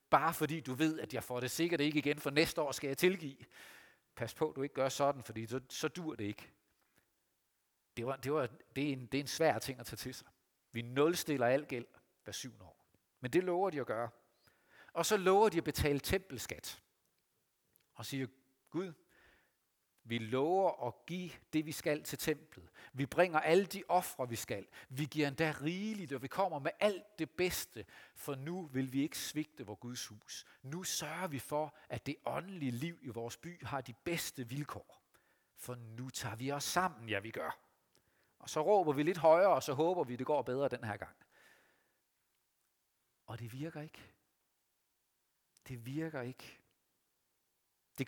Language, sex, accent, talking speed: Danish, male, native, 190 wpm